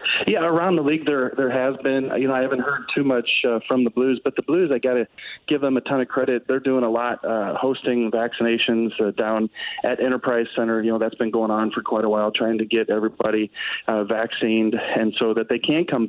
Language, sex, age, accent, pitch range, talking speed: English, male, 40-59, American, 115-130 Hz, 245 wpm